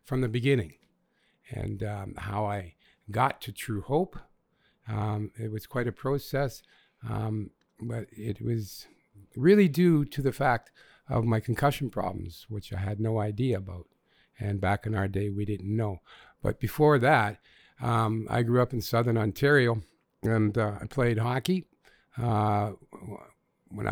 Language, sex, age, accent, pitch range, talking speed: English, male, 50-69, American, 110-140 Hz, 155 wpm